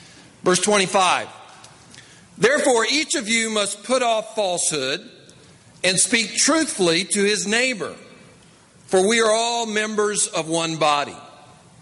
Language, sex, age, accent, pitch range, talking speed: English, male, 50-69, American, 175-220 Hz, 120 wpm